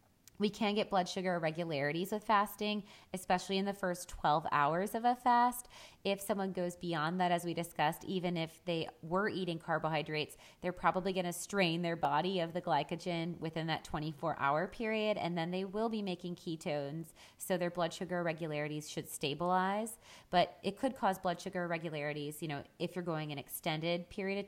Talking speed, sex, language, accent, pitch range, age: 185 wpm, female, English, American, 155-185 Hz, 20-39